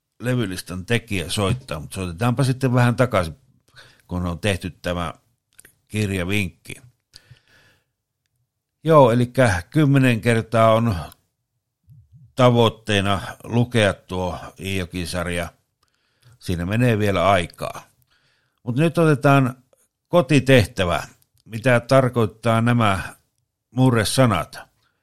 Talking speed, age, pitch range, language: 80 wpm, 60-79, 100-130 Hz, Finnish